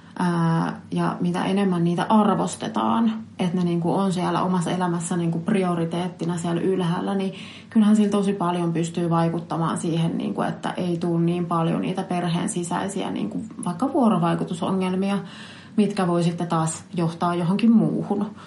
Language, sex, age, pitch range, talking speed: Finnish, female, 30-49, 170-195 Hz, 125 wpm